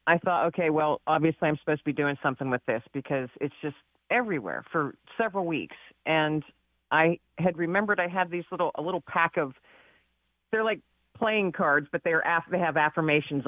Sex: female